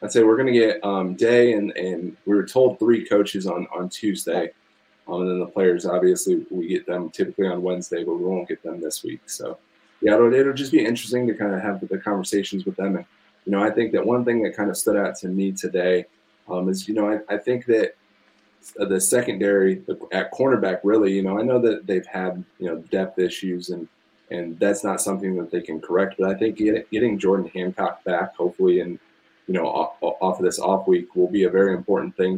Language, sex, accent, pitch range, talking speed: English, male, American, 95-115 Hz, 225 wpm